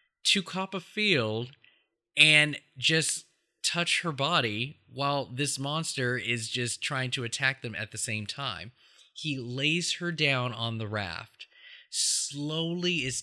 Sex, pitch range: male, 115-150 Hz